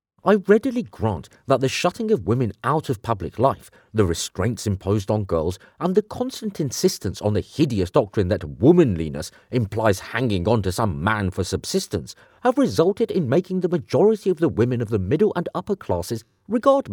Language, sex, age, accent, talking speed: English, male, 40-59, British, 180 wpm